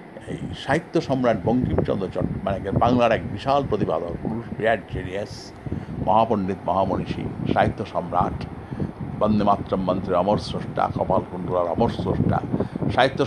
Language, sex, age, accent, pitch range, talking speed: Bengali, male, 50-69, native, 100-130 Hz, 110 wpm